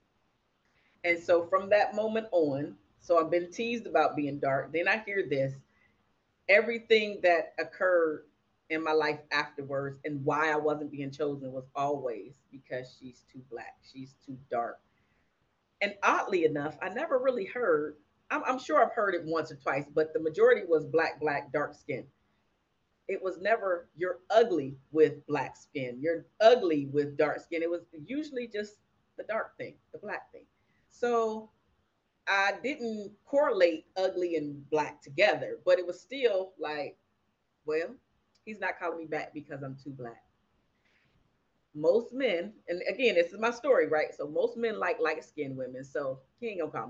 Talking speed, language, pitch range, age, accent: 165 wpm, English, 150-220 Hz, 40-59, American